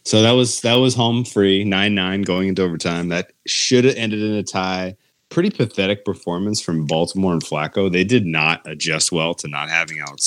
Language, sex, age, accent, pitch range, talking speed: English, male, 30-49, American, 80-100 Hz, 200 wpm